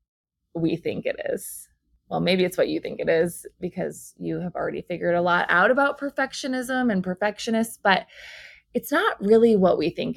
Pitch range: 175-235 Hz